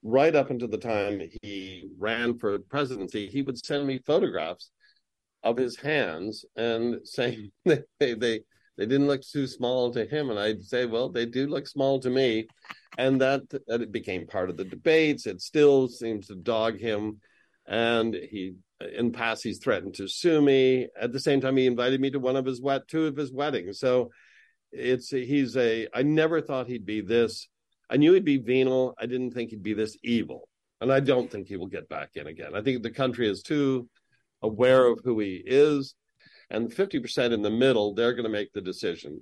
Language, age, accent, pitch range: English, 50-69, American, 110-135 Hz